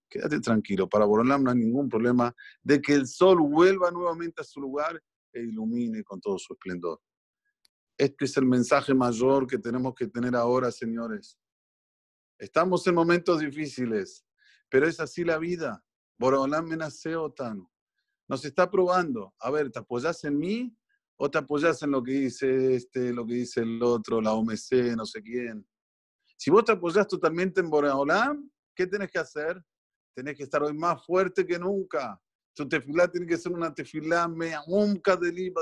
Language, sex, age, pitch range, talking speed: Spanish, male, 50-69, 140-180 Hz, 175 wpm